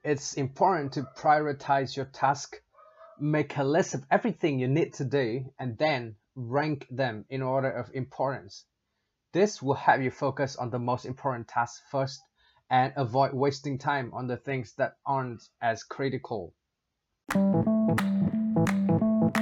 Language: Vietnamese